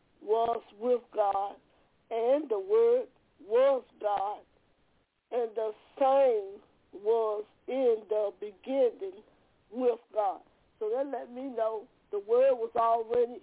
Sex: female